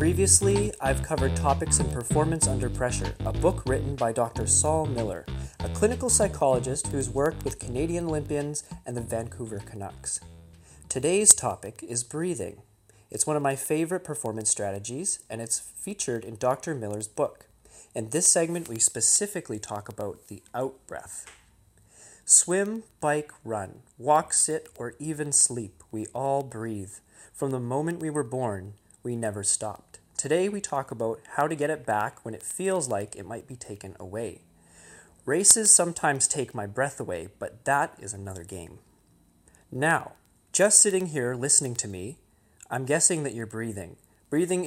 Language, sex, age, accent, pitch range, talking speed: English, male, 30-49, American, 105-145 Hz, 155 wpm